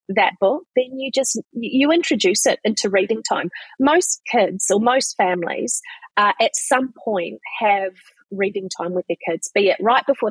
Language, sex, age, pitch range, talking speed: English, female, 30-49, 195-275 Hz, 175 wpm